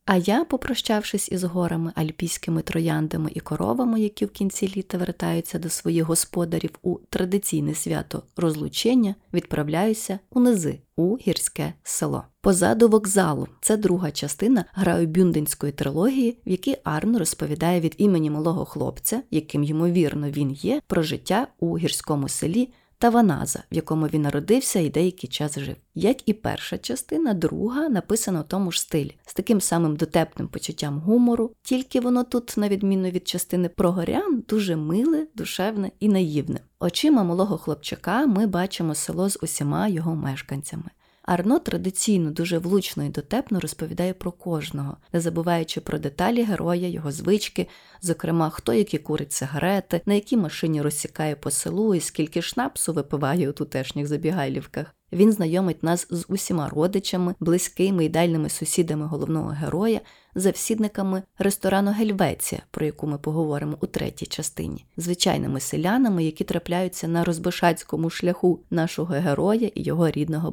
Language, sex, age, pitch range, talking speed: Ukrainian, female, 30-49, 155-200 Hz, 140 wpm